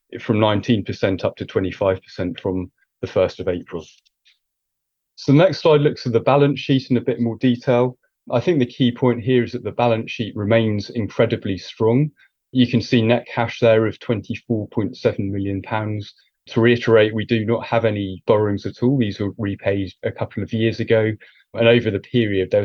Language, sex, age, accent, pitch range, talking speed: English, male, 30-49, British, 100-120 Hz, 185 wpm